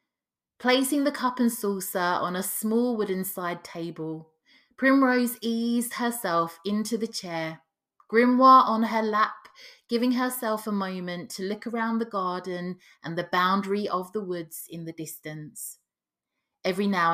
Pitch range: 170-230 Hz